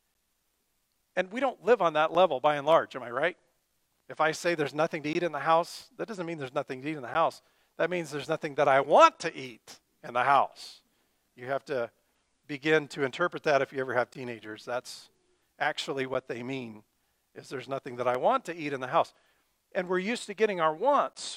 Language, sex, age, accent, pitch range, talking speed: English, male, 40-59, American, 135-180 Hz, 225 wpm